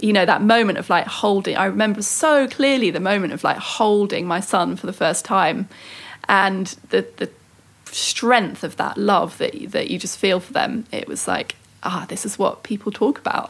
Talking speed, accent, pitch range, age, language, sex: 205 wpm, British, 195-225 Hz, 30-49, English, female